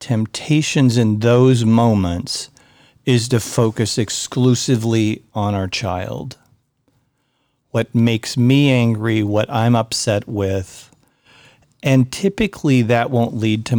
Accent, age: American, 50-69